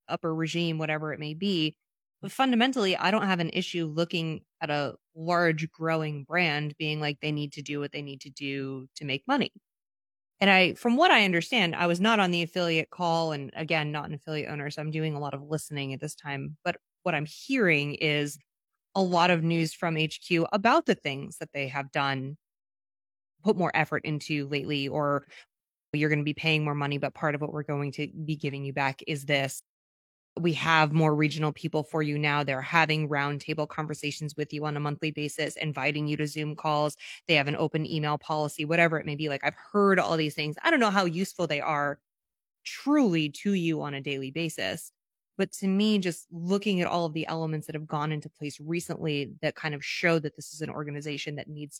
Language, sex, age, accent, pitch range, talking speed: English, female, 20-39, American, 145-170 Hz, 215 wpm